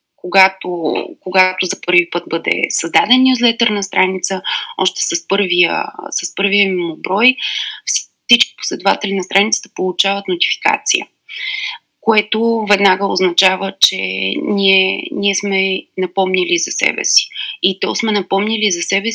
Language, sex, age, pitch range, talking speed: Bulgarian, female, 20-39, 185-225 Hz, 120 wpm